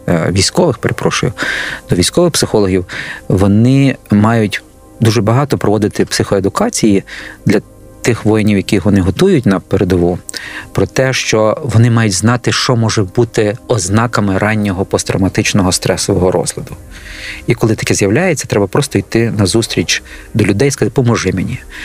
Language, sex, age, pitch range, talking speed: Ukrainian, male, 40-59, 95-125 Hz, 130 wpm